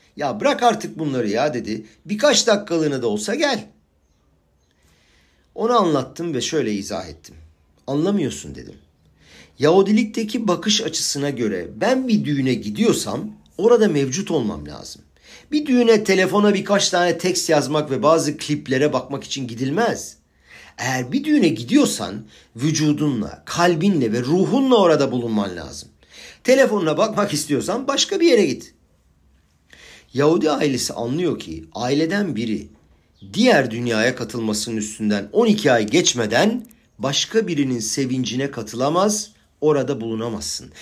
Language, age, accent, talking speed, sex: Turkish, 50-69, native, 120 wpm, male